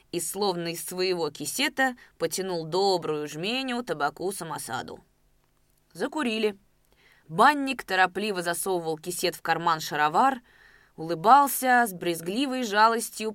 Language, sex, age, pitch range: Russian, female, 20-39, 170-245 Hz